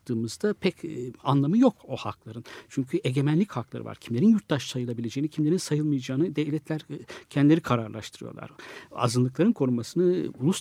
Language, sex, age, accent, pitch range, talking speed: Turkish, male, 60-79, native, 120-160 Hz, 115 wpm